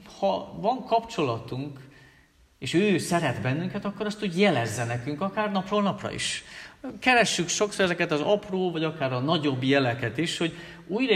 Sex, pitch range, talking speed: male, 120-160 Hz, 155 wpm